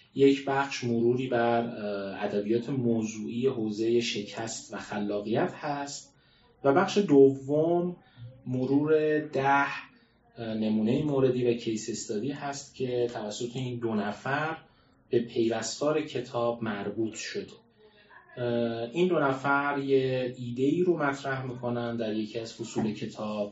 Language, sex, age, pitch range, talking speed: Persian, male, 30-49, 110-140 Hz, 115 wpm